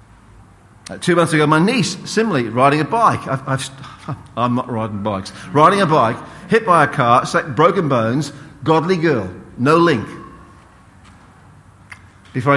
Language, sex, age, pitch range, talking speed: English, male, 50-69, 110-155 Hz, 130 wpm